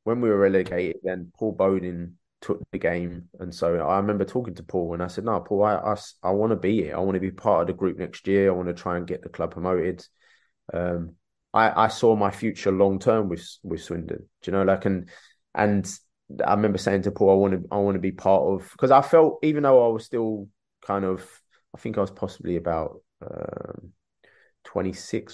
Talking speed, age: 230 wpm, 20-39